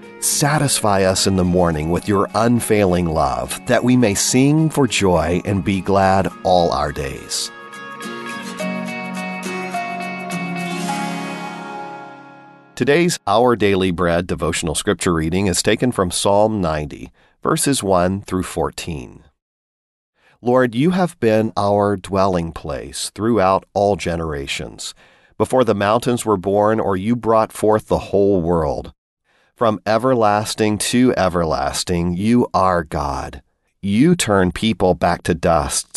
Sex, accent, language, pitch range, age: male, American, Chinese, 90-110 Hz, 40-59